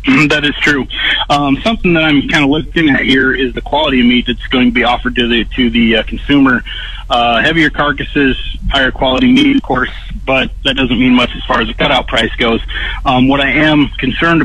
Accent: American